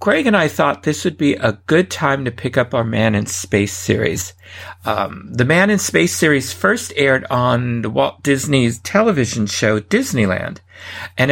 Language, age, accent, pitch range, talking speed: English, 50-69, American, 105-140 Hz, 180 wpm